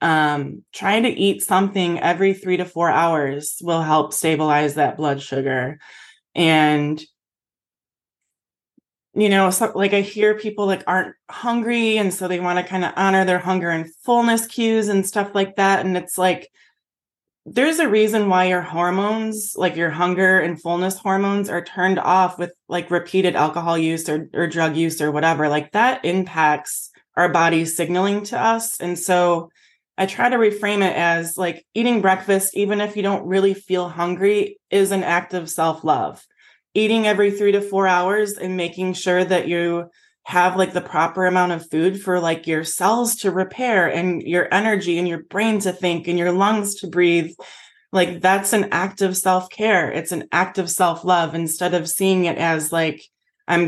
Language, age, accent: English, 20-39, American